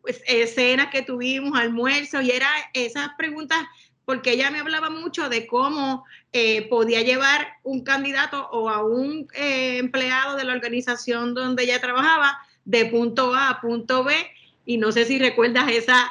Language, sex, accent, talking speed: English, female, American, 160 wpm